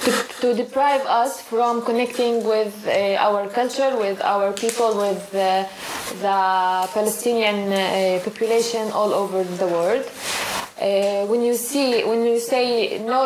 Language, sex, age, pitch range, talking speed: Turkish, female, 20-39, 210-255 Hz, 140 wpm